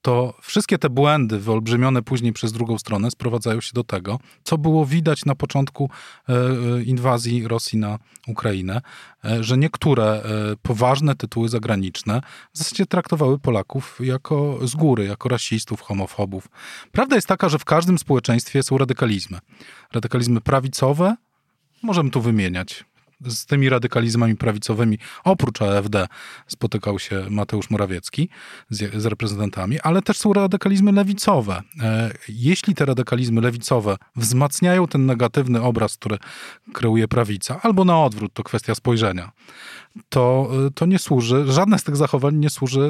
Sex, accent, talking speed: male, native, 135 wpm